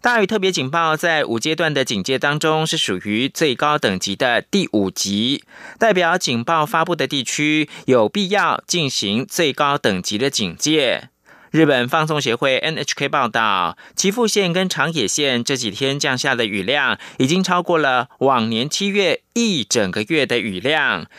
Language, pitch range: German, 125-180 Hz